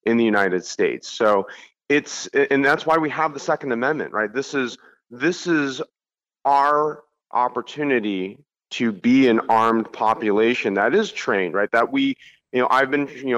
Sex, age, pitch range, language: male, 30-49, 110-140 Hz, English